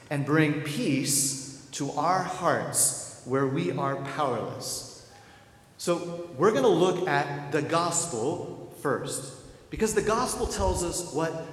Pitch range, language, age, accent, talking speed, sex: 130-170 Hz, English, 40-59, American, 125 wpm, male